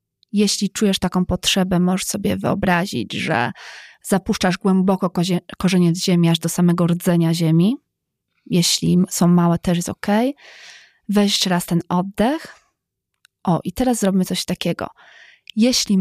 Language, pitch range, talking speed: Polish, 180-230 Hz, 140 wpm